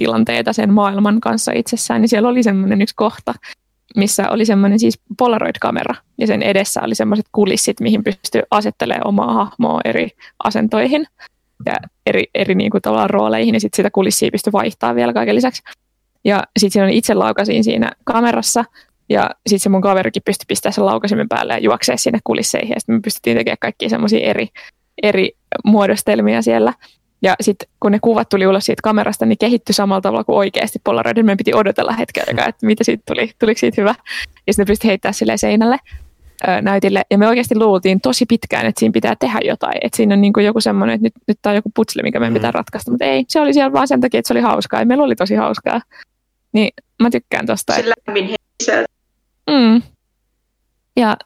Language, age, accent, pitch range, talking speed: Finnish, 20-39, native, 195-230 Hz, 195 wpm